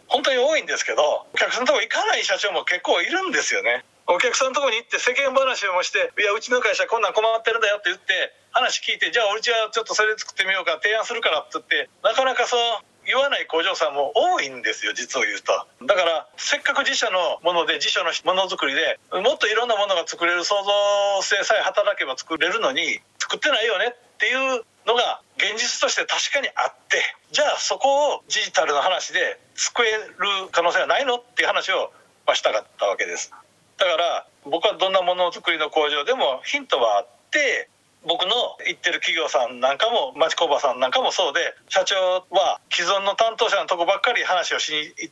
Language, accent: Japanese, native